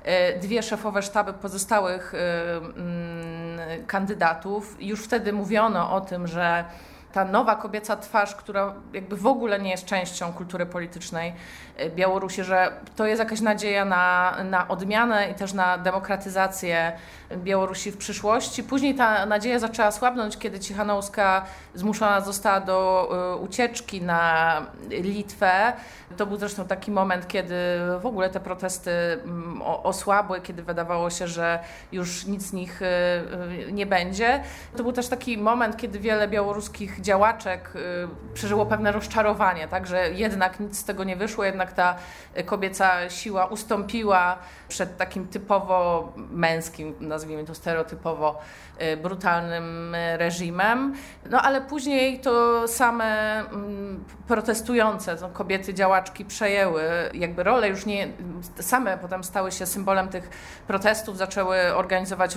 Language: Polish